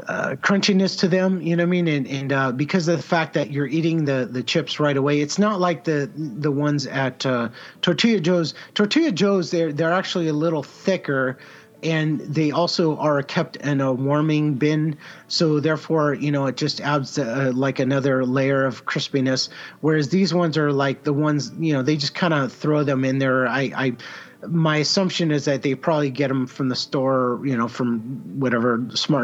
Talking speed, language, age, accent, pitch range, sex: 205 wpm, English, 30-49, American, 130-155 Hz, male